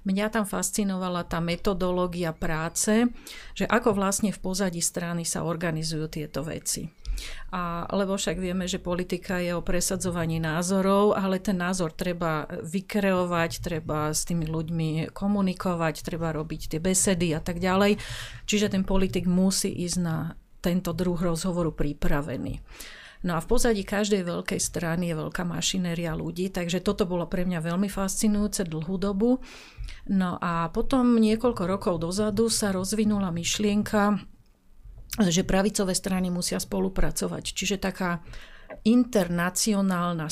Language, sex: Slovak, female